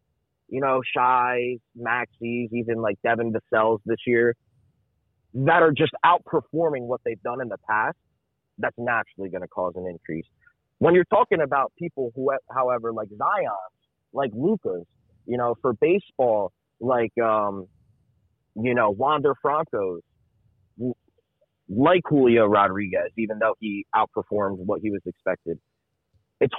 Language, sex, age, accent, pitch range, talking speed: English, male, 30-49, American, 105-135 Hz, 135 wpm